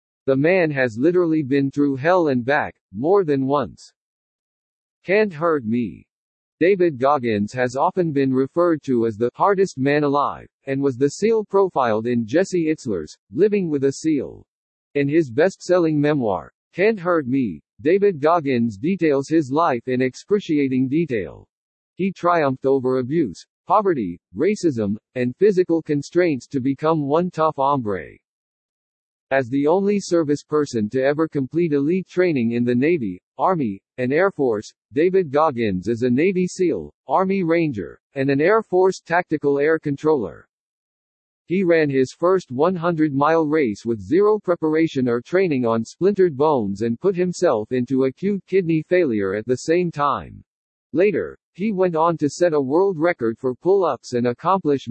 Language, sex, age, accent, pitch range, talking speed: English, male, 50-69, American, 130-175 Hz, 150 wpm